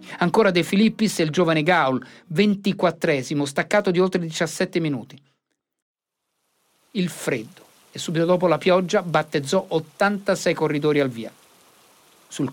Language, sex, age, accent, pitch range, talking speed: Italian, male, 50-69, native, 150-200 Hz, 125 wpm